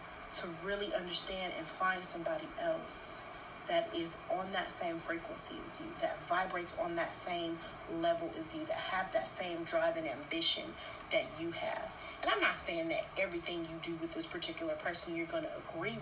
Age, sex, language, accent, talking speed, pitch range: 30-49, female, English, American, 185 wpm, 200-330 Hz